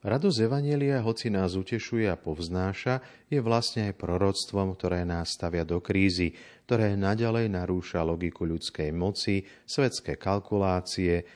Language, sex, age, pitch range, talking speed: Slovak, male, 40-59, 90-115 Hz, 125 wpm